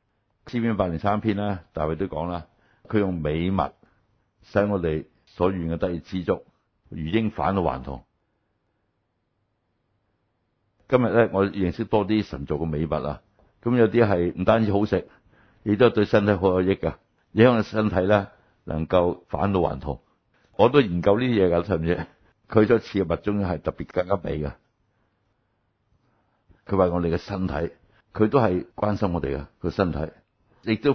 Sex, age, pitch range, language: male, 60-79, 90-115 Hz, Chinese